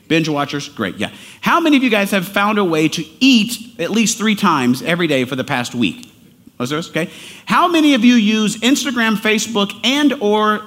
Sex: male